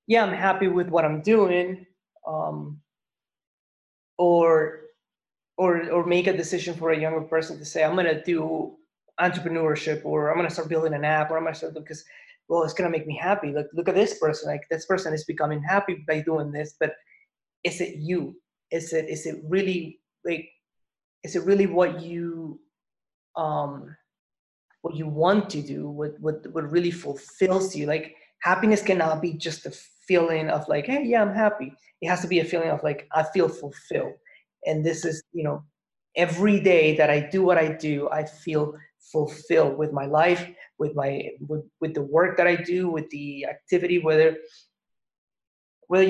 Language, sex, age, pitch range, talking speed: English, male, 20-39, 155-185 Hz, 180 wpm